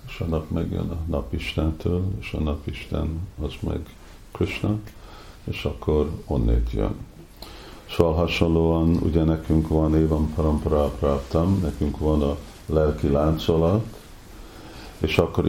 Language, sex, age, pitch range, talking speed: Hungarian, male, 50-69, 75-85 Hz, 110 wpm